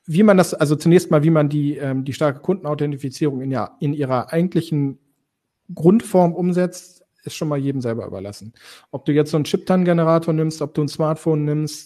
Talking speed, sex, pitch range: 190 wpm, male, 135-165 Hz